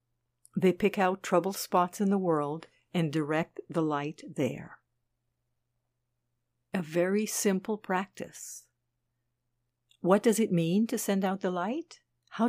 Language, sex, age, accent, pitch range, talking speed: English, female, 60-79, American, 135-205 Hz, 130 wpm